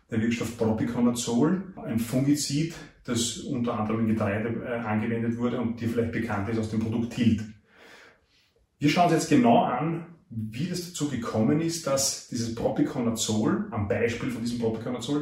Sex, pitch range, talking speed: male, 110-130 Hz, 160 wpm